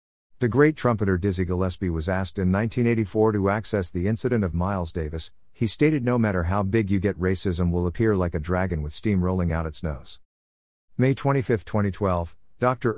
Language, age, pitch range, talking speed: English, 50-69, 85-115 Hz, 185 wpm